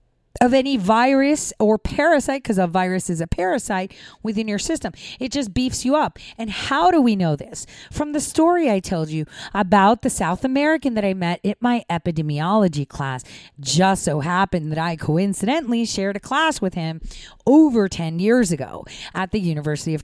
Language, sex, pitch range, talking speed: English, female, 160-245 Hz, 185 wpm